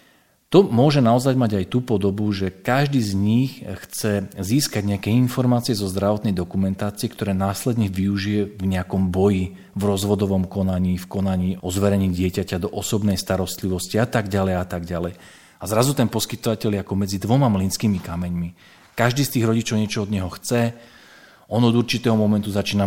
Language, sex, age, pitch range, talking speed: Slovak, male, 40-59, 95-115 Hz, 170 wpm